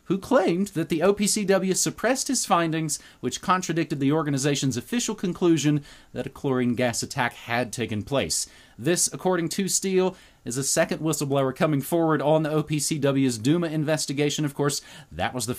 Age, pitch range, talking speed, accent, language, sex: 30-49, 125-175 Hz, 160 wpm, American, English, male